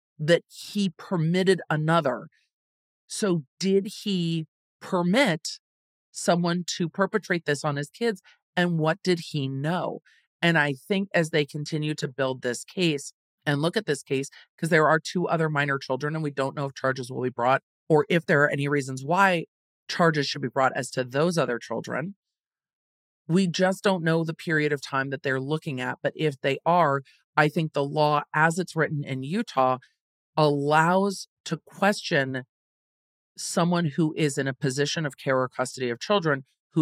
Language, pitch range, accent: English, 135-170 Hz, American